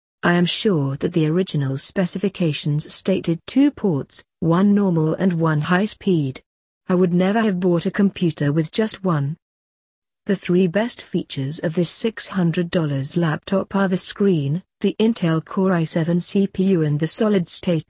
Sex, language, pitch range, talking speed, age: female, English, 150-190 Hz, 150 wpm, 40-59